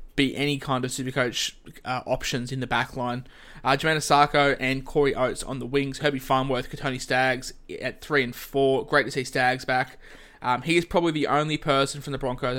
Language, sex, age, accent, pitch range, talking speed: English, male, 20-39, Australian, 125-145 Hz, 210 wpm